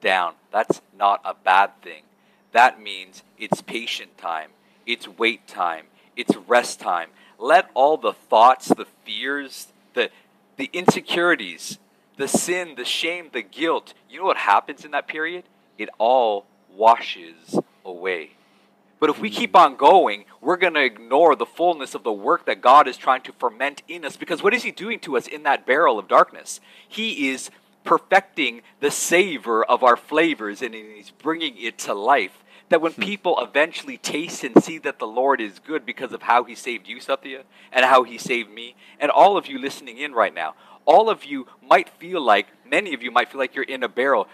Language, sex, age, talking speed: English, male, 40-59, 190 wpm